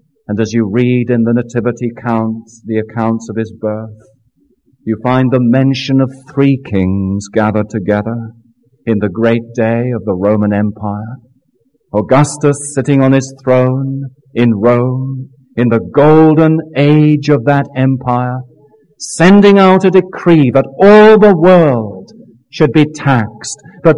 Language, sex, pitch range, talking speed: English, male, 115-160 Hz, 140 wpm